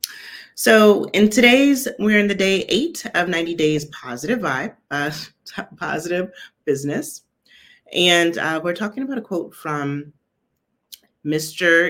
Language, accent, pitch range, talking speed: English, American, 140-200 Hz, 125 wpm